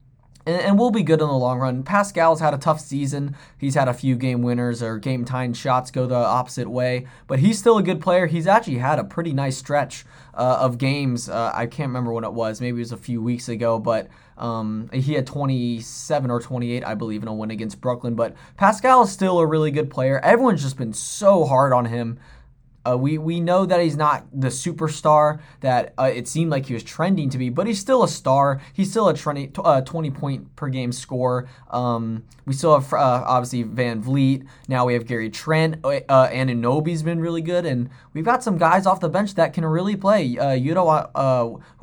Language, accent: English, American